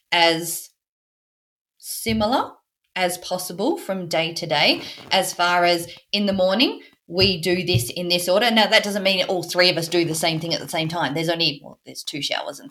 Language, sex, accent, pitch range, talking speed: English, female, Australian, 165-205 Hz, 200 wpm